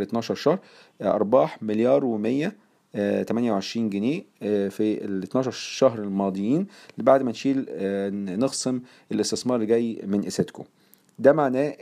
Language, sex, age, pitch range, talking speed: Arabic, male, 40-59, 100-125 Hz, 120 wpm